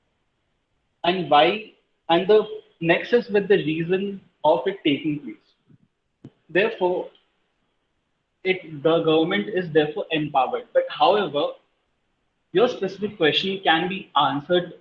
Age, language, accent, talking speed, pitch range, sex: 30-49, English, Indian, 110 wpm, 155-205 Hz, male